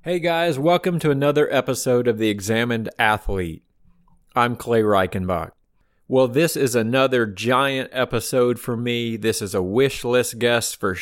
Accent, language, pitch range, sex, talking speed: American, English, 105-130 Hz, male, 150 wpm